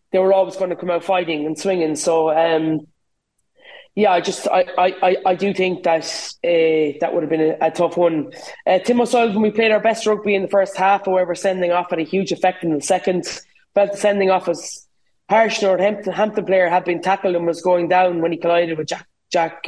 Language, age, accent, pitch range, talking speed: English, 20-39, Irish, 170-200 Hz, 230 wpm